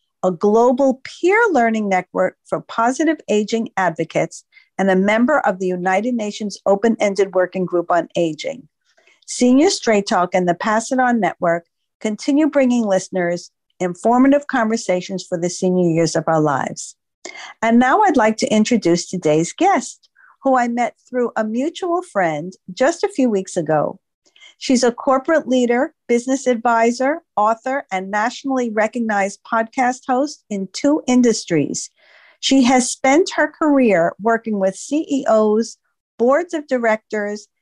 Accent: American